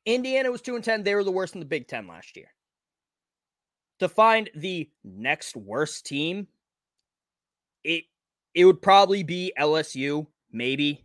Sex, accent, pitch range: male, American, 150-200 Hz